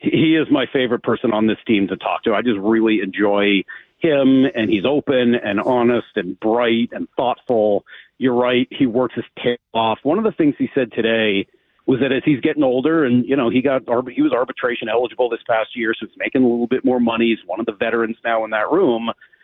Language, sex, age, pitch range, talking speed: English, male, 40-59, 115-155 Hz, 230 wpm